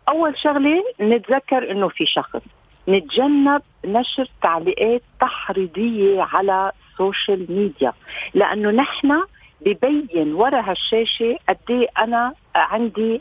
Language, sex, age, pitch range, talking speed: Arabic, female, 50-69, 185-265 Hz, 95 wpm